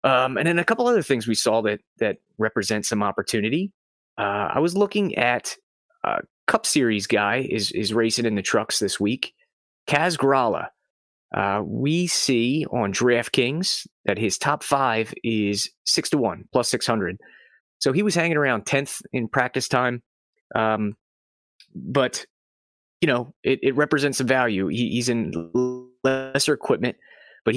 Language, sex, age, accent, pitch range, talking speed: English, male, 30-49, American, 110-145 Hz, 160 wpm